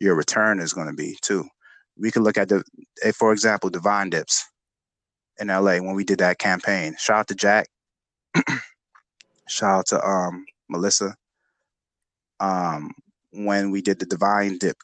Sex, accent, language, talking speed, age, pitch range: male, American, English, 160 wpm, 20-39, 95-110 Hz